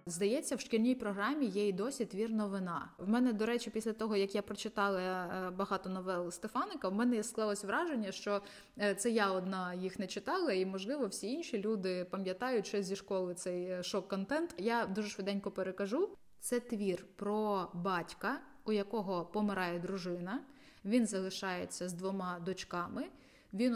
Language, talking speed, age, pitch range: Ukrainian, 155 wpm, 20-39, 190-245 Hz